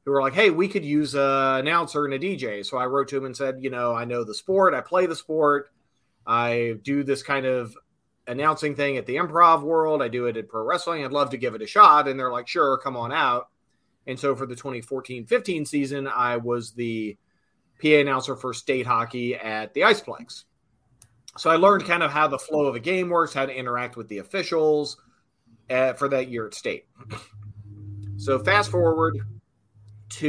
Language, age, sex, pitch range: English, 30-49, male, 120-150 Hz